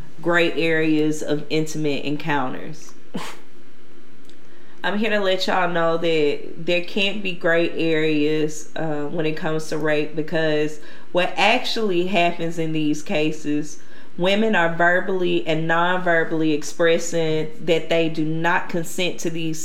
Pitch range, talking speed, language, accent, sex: 160-180 Hz, 130 wpm, English, American, female